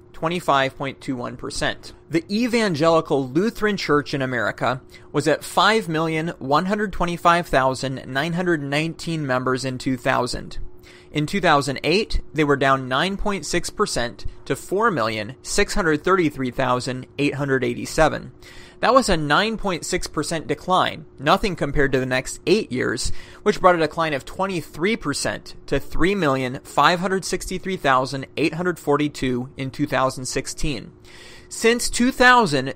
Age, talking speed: 30-49, 80 wpm